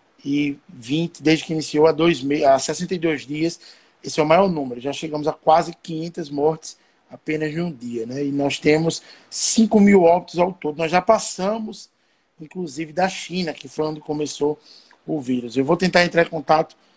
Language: Portuguese